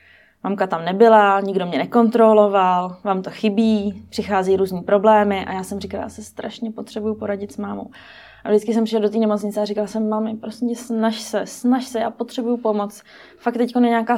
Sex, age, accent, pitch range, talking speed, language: female, 20-39, native, 185-215 Hz, 190 wpm, Czech